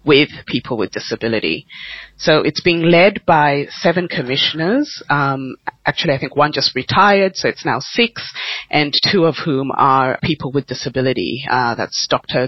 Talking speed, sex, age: 160 wpm, female, 30-49